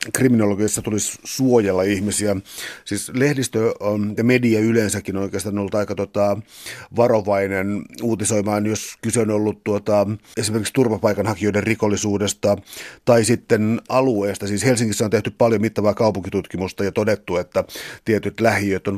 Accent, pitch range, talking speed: native, 100-120 Hz, 130 wpm